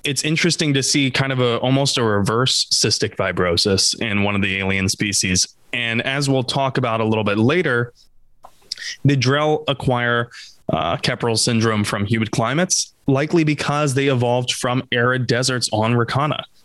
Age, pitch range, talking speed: 20-39, 110-140 Hz, 160 wpm